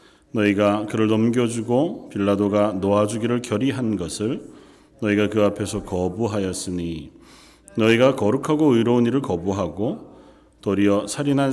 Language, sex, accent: Korean, male, native